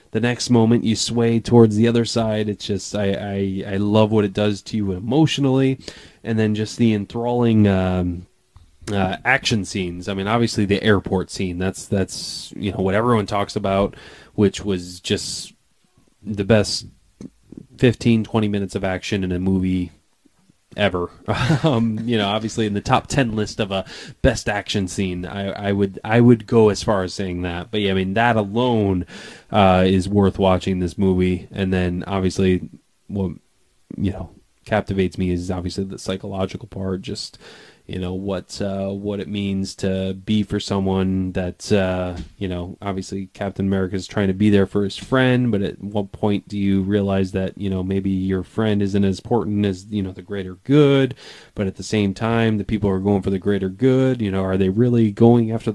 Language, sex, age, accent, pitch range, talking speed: English, male, 20-39, American, 95-115 Hz, 190 wpm